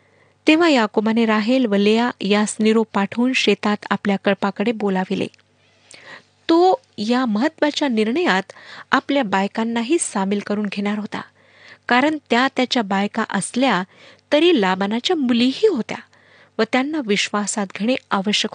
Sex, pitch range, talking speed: female, 205-265 Hz, 115 wpm